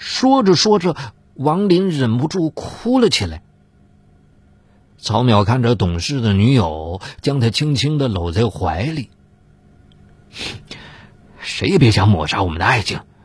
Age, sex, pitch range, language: 50-69, male, 105-165 Hz, Chinese